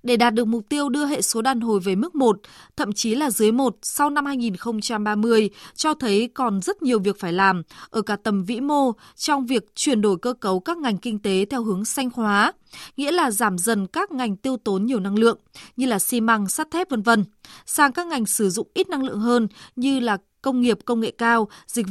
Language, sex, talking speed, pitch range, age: Vietnamese, female, 225 wpm, 210-270 Hz, 20-39